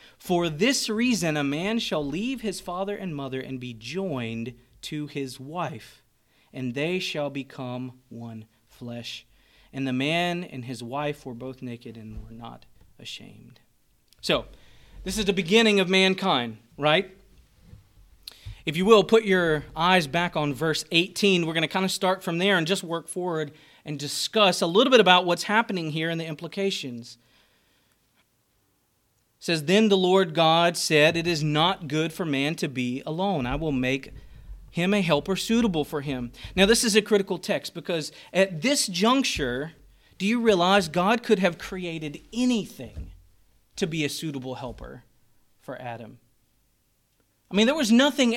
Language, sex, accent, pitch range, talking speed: English, male, American, 130-195 Hz, 165 wpm